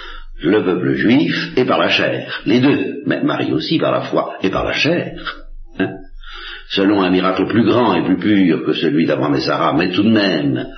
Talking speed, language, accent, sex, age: 195 wpm, French, French, male, 60-79